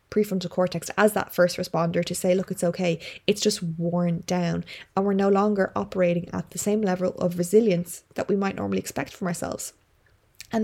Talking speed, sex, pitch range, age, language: 190 wpm, female, 175-195 Hz, 20-39, English